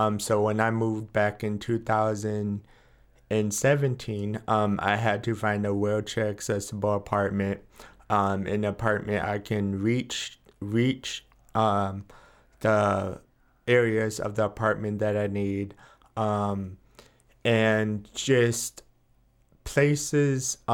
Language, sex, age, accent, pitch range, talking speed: English, male, 20-39, American, 100-115 Hz, 115 wpm